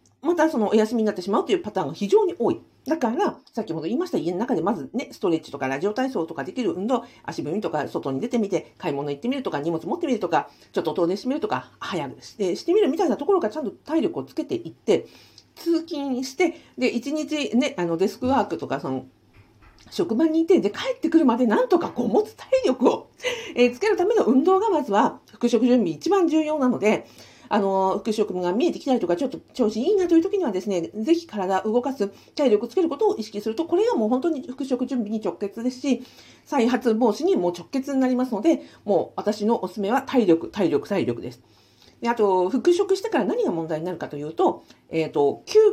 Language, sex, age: Japanese, female, 50-69